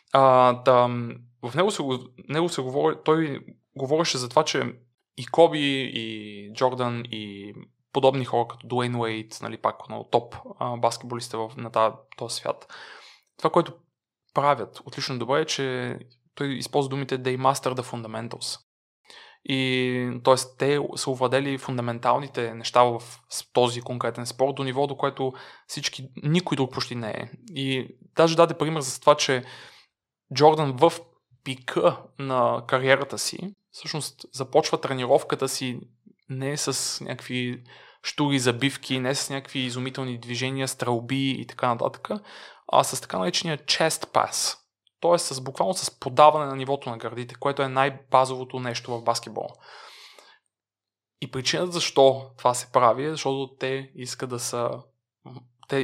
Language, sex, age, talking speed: Bulgarian, male, 20-39, 145 wpm